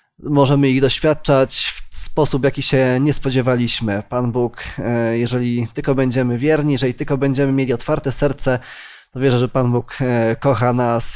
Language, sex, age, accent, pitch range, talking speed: Polish, male, 20-39, native, 120-140 Hz, 150 wpm